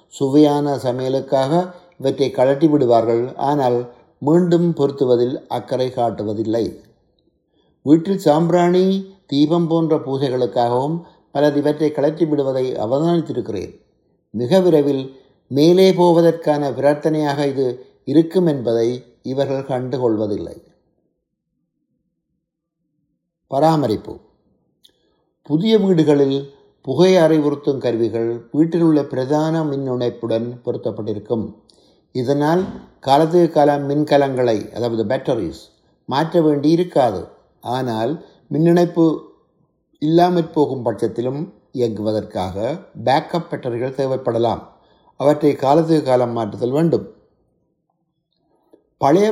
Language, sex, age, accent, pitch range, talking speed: Tamil, male, 50-69, native, 125-160 Hz, 80 wpm